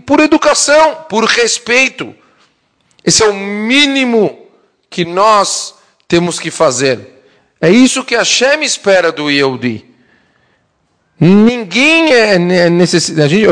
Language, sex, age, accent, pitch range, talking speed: English, male, 40-59, Brazilian, 125-180 Hz, 105 wpm